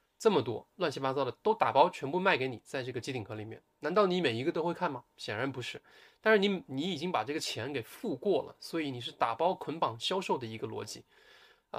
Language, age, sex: Chinese, 20-39, male